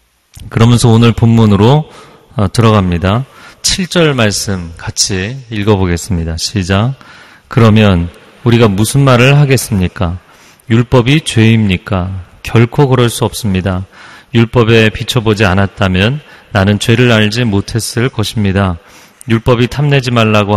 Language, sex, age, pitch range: Korean, male, 40-59, 100-130 Hz